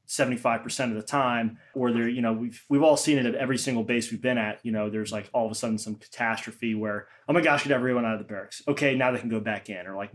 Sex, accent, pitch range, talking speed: male, American, 115-135 Hz, 290 wpm